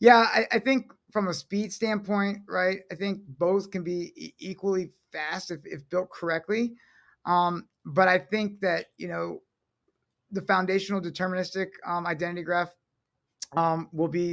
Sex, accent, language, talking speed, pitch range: male, American, English, 155 wpm, 170-200 Hz